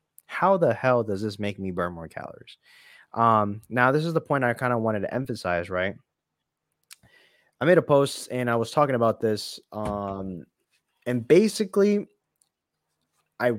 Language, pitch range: English, 105-140 Hz